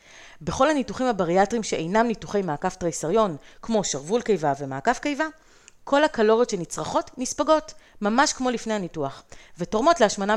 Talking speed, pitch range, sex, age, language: 125 wpm, 170-240 Hz, female, 30-49, Hebrew